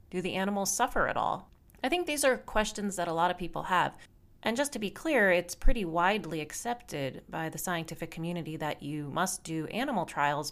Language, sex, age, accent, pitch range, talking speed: English, female, 30-49, American, 150-195 Hz, 205 wpm